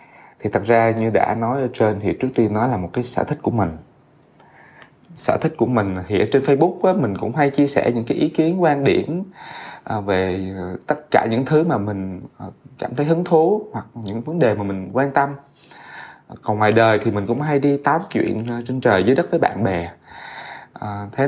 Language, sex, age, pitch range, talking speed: Vietnamese, male, 20-39, 95-135 Hz, 210 wpm